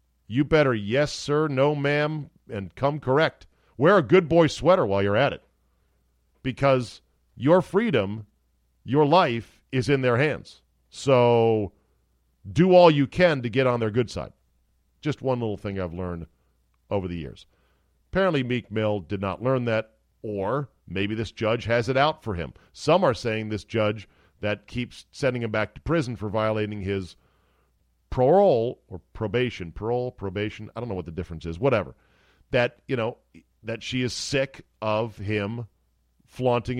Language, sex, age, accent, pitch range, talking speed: English, male, 40-59, American, 95-125 Hz, 165 wpm